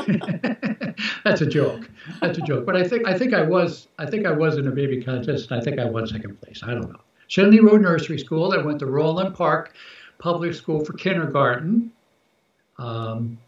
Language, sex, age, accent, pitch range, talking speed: English, male, 60-79, American, 135-180 Hz, 200 wpm